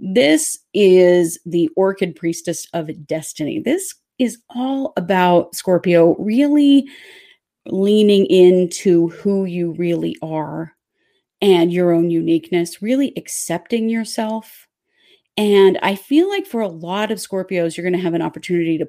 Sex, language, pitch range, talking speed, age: female, English, 170-250 Hz, 135 wpm, 30-49